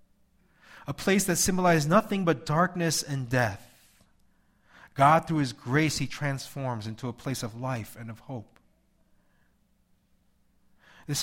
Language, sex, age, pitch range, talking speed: English, male, 30-49, 110-145 Hz, 130 wpm